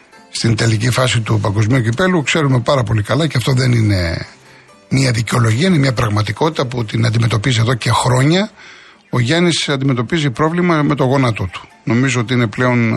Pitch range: 110-140 Hz